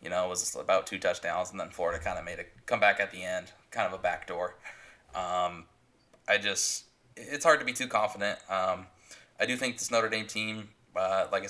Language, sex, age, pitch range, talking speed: English, male, 20-39, 95-110 Hz, 220 wpm